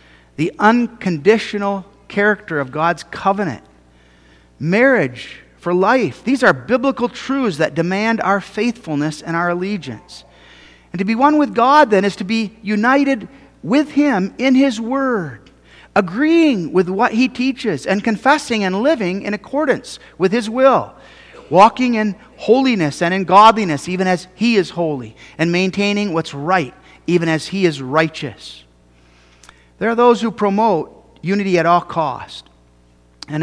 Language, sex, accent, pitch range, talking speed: English, male, American, 150-240 Hz, 145 wpm